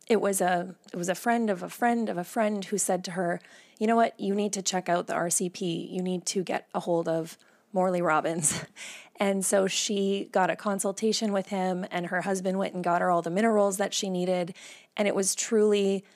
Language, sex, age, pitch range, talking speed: English, female, 20-39, 185-220 Hz, 225 wpm